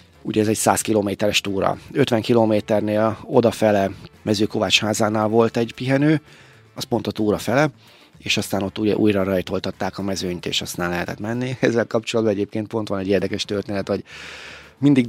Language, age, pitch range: Hungarian, 30-49, 100-115 Hz